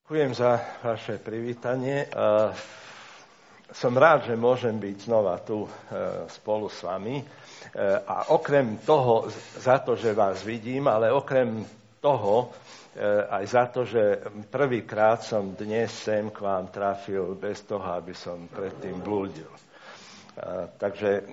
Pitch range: 100-125 Hz